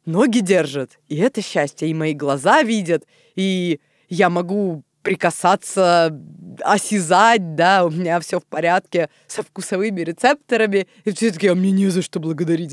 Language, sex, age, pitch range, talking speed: Russian, female, 20-39, 155-210 Hz, 150 wpm